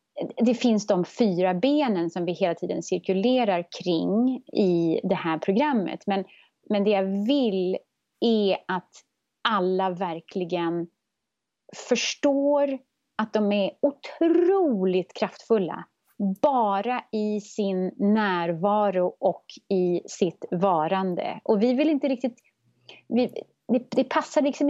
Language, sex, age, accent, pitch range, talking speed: Swedish, female, 30-49, native, 180-235 Hz, 115 wpm